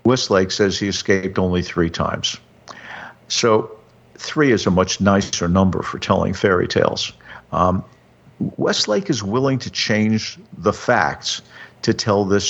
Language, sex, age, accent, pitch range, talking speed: English, male, 50-69, American, 95-110 Hz, 140 wpm